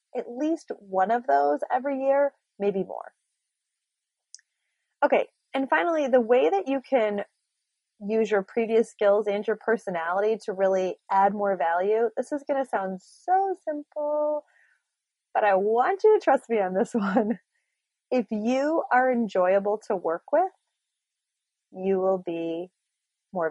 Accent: American